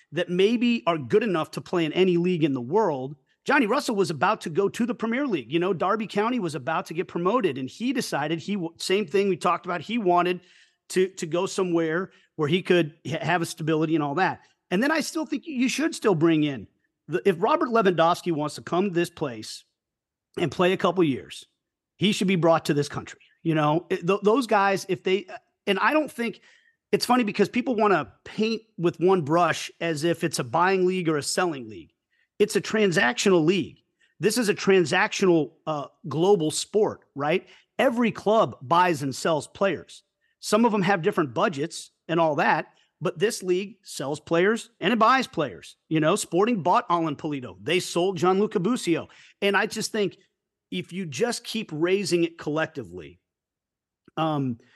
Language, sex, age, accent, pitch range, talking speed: English, male, 40-59, American, 165-210 Hz, 200 wpm